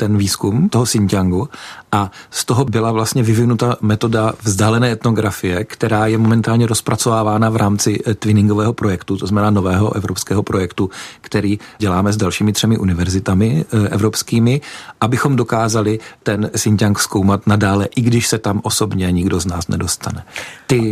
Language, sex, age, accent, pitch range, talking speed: Czech, male, 40-59, native, 105-120 Hz, 140 wpm